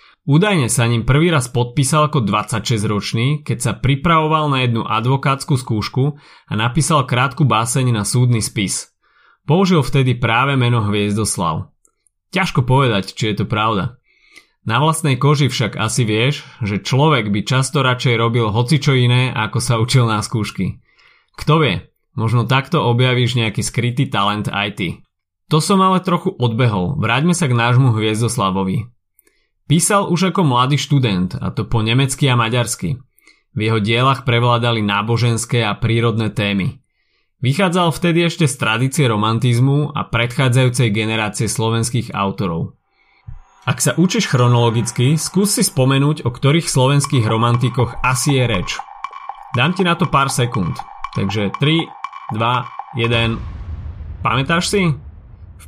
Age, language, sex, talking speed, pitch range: 30-49, Slovak, male, 140 wpm, 115-145 Hz